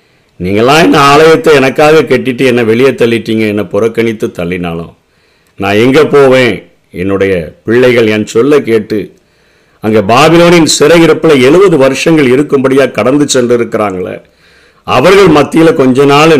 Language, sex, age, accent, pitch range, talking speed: Tamil, male, 50-69, native, 115-155 Hz, 120 wpm